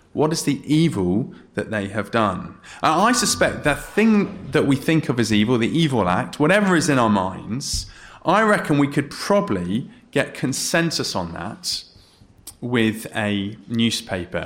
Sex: male